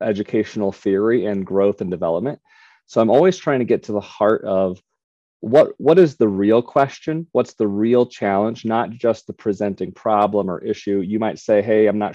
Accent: American